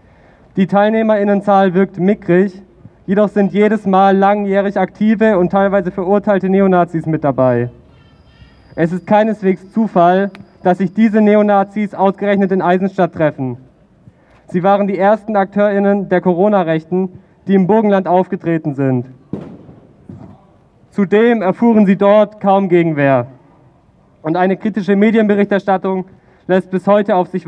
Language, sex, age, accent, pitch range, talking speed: German, male, 40-59, German, 180-205 Hz, 120 wpm